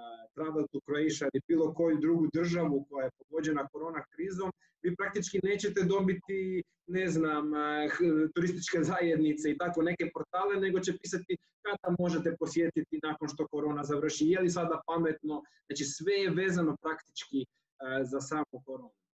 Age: 20-39